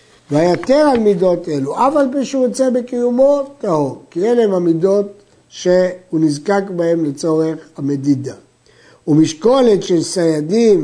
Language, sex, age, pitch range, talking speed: Hebrew, male, 60-79, 165-220 Hz, 110 wpm